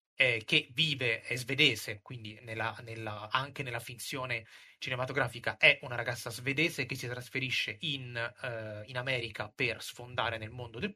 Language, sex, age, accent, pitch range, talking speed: Italian, male, 30-49, native, 115-140 Hz, 135 wpm